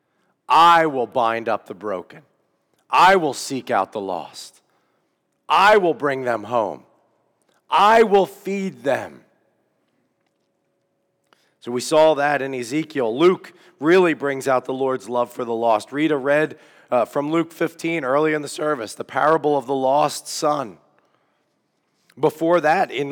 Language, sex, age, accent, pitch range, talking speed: English, male, 40-59, American, 130-165 Hz, 145 wpm